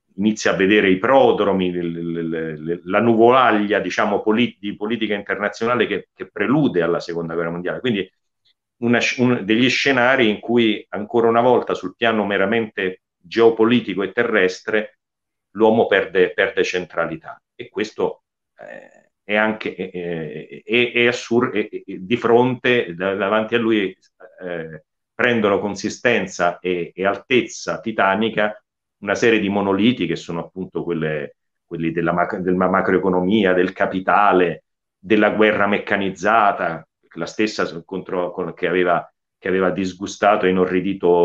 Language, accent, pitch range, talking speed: Italian, native, 85-115 Hz, 115 wpm